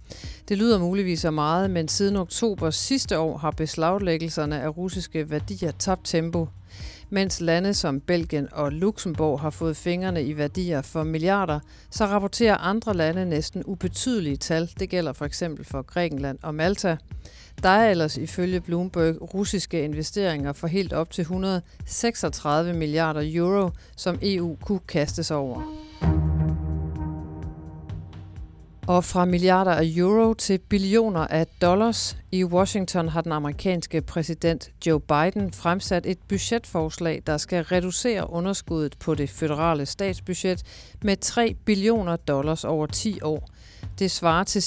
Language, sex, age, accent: Danish, female, 50-69, native